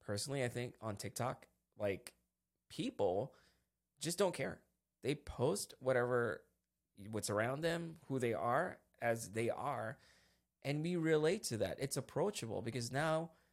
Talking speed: 140 wpm